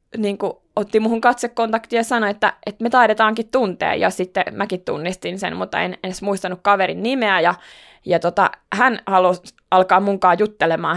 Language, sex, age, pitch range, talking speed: Finnish, female, 20-39, 180-215 Hz, 165 wpm